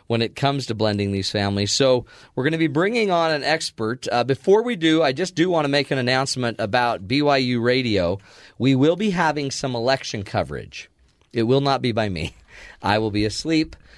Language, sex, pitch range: English, male, 105-155 Hz